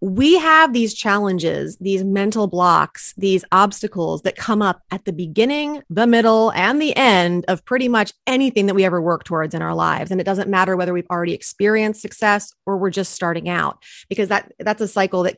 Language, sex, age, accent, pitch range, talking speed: English, female, 30-49, American, 175-215 Hz, 200 wpm